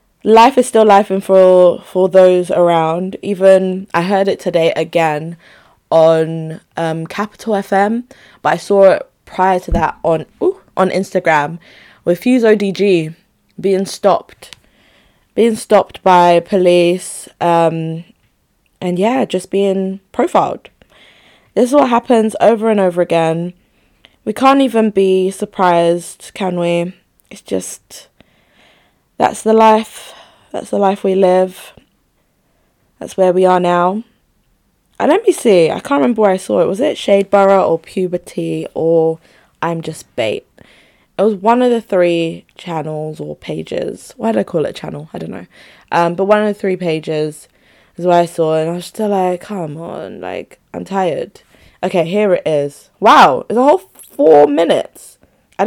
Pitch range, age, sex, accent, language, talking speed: 170-205 Hz, 20-39, female, British, English, 160 wpm